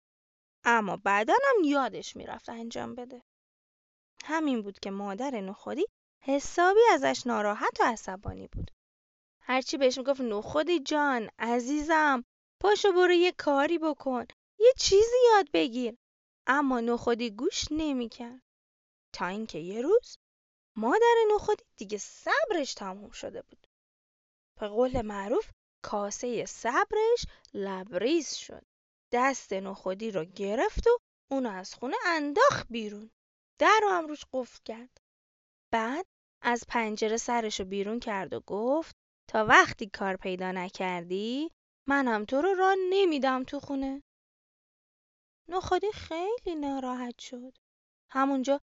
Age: 20-39